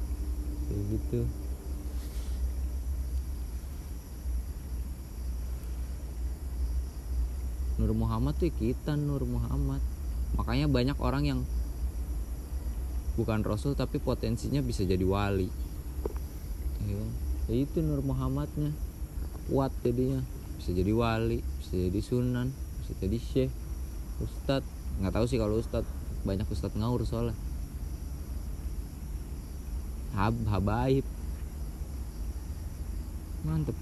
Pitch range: 70-110 Hz